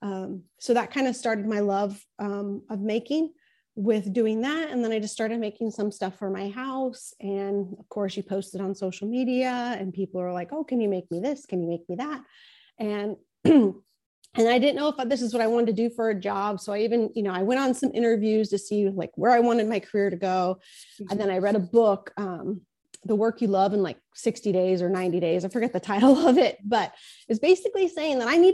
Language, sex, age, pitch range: English, female, 30-49, 195-240 Hz